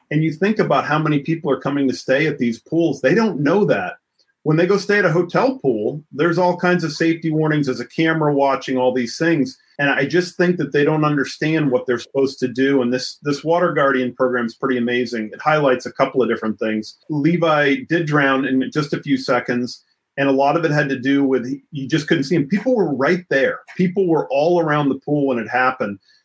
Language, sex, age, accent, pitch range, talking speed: English, male, 40-59, American, 130-170 Hz, 235 wpm